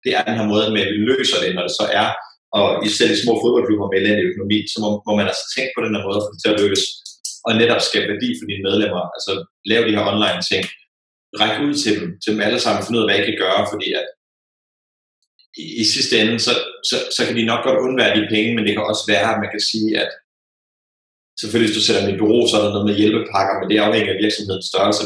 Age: 30-49